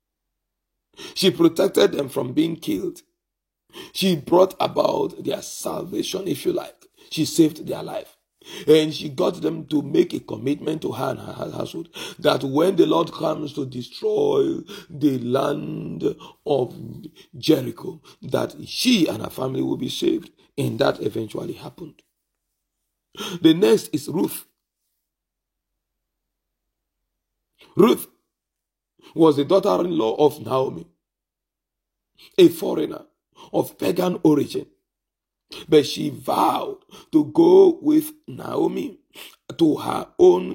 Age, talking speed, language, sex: 50-69, 115 wpm, English, male